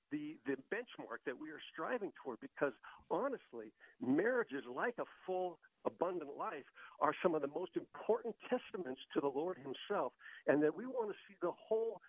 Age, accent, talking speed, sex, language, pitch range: 60-79, American, 175 wpm, male, English, 150-225 Hz